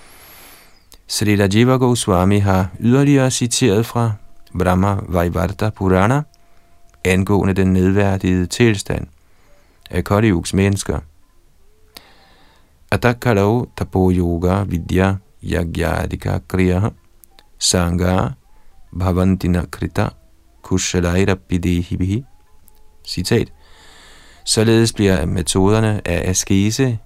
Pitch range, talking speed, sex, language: 90-105 Hz, 75 wpm, male, Danish